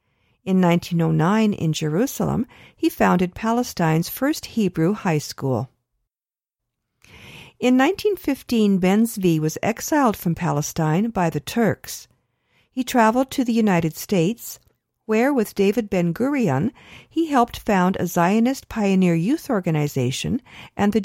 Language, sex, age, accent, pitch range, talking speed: English, female, 50-69, American, 165-225 Hz, 120 wpm